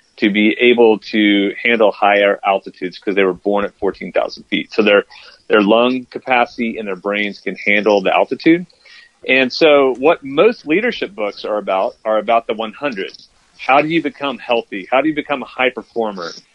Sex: male